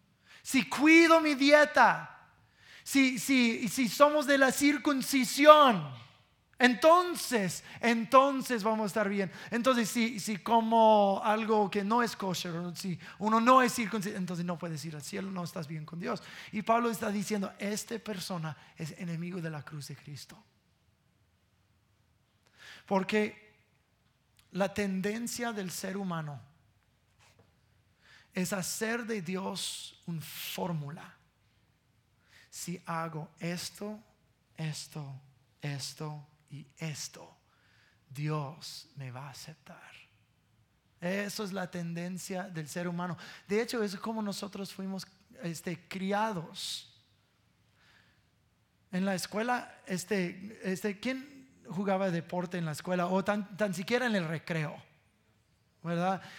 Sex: male